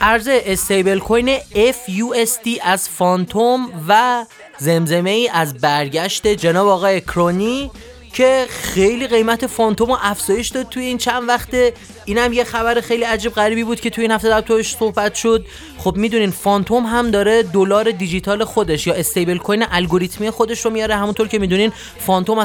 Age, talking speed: 30-49, 155 wpm